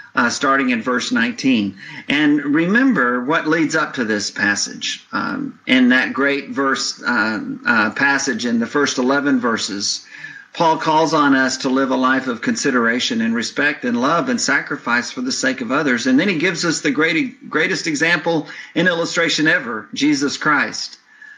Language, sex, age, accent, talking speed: English, male, 50-69, American, 170 wpm